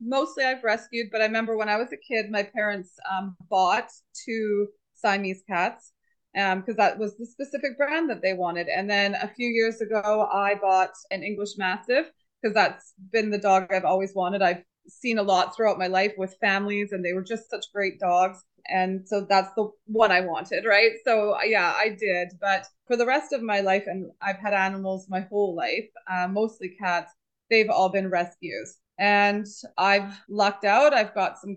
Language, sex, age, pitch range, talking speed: English, female, 20-39, 190-230 Hz, 195 wpm